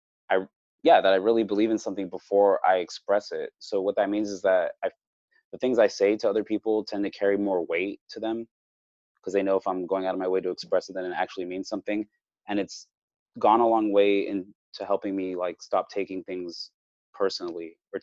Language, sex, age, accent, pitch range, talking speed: English, male, 20-39, American, 90-115 Hz, 220 wpm